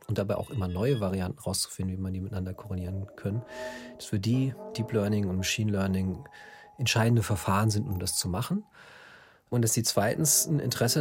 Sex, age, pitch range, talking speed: male, 40-59, 100-125 Hz, 185 wpm